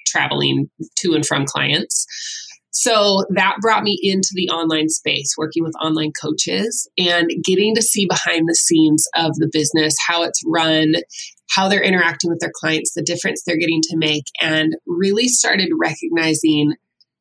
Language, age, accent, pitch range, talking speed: English, 20-39, American, 155-200 Hz, 160 wpm